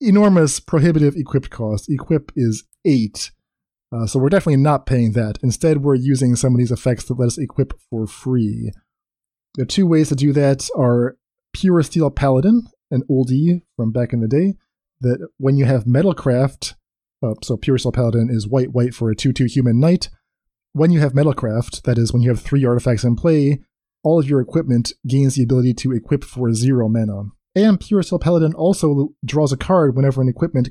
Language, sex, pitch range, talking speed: English, male, 120-150 Hz, 185 wpm